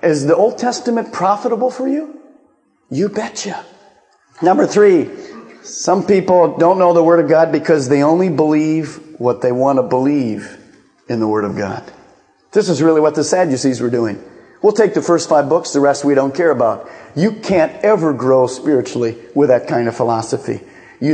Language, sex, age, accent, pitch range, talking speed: English, male, 40-59, American, 145-210 Hz, 180 wpm